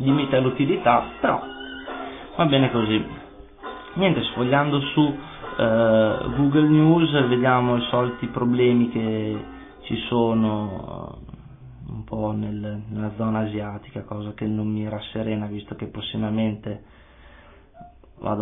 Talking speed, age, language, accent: 115 wpm, 30-49, Italian, native